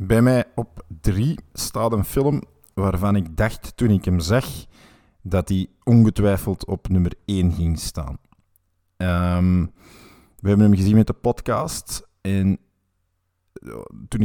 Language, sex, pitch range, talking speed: Dutch, male, 90-105 Hz, 135 wpm